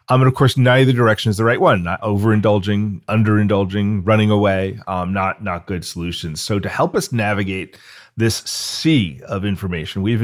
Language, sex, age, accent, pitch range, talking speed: English, male, 40-59, American, 95-120 Hz, 175 wpm